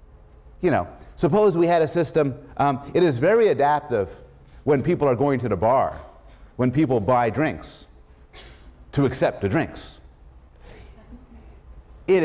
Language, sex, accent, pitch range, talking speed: English, male, American, 100-165 Hz, 135 wpm